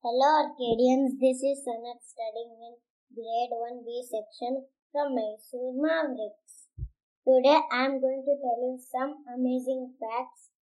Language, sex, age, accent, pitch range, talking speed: English, male, 20-39, Indian, 250-305 Hz, 130 wpm